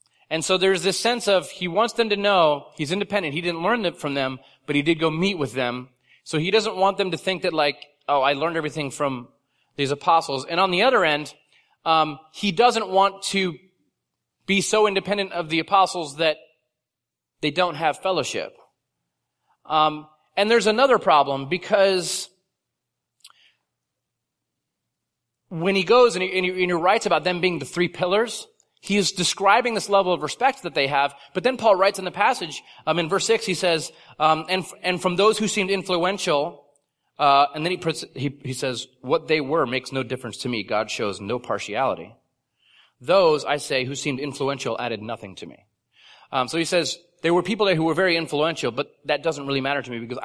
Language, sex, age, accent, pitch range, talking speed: English, male, 30-49, American, 140-190 Hz, 200 wpm